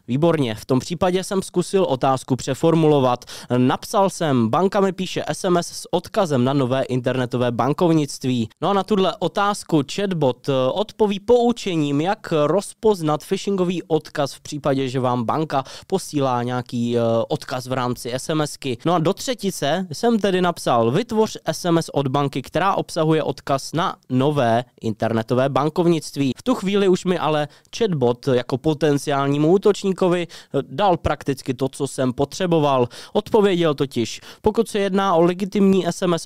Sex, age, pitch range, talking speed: male, 20-39, 135-180 Hz, 140 wpm